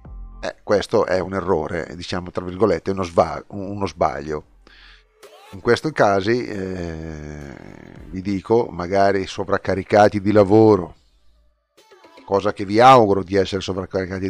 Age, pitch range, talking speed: 40-59, 95-115 Hz, 115 wpm